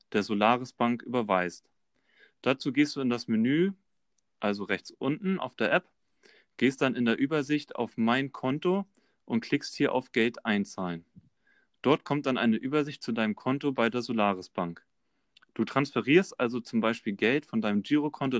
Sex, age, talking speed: male, 30-49, 165 wpm